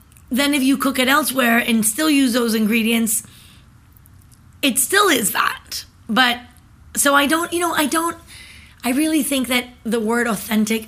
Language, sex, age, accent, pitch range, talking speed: English, female, 30-49, American, 215-245 Hz, 165 wpm